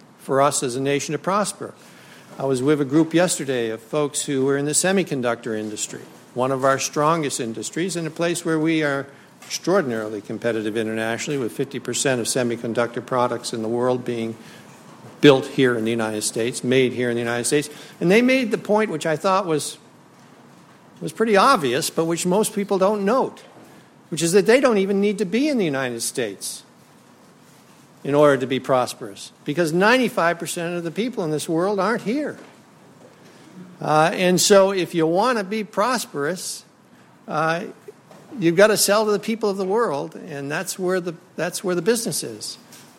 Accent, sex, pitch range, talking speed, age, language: American, male, 135-195 Hz, 185 wpm, 60-79, English